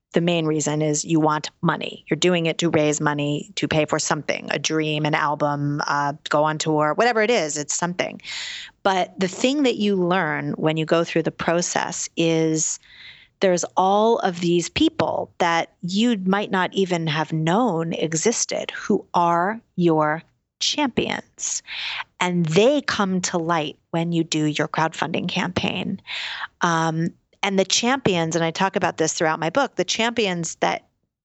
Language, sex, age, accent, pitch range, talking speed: English, female, 30-49, American, 160-190 Hz, 165 wpm